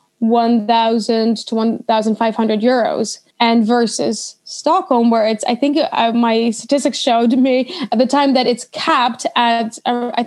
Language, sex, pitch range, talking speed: English, female, 230-260 Hz, 145 wpm